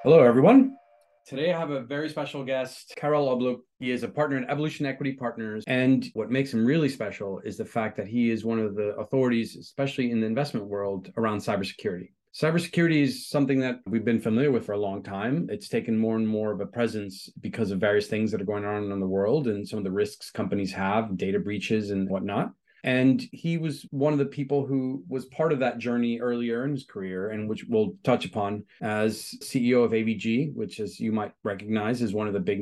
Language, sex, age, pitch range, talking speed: English, male, 30-49, 105-140 Hz, 220 wpm